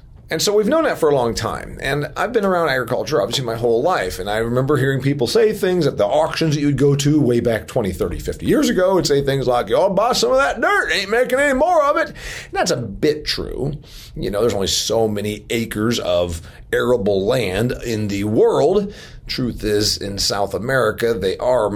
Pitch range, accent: 100-140 Hz, American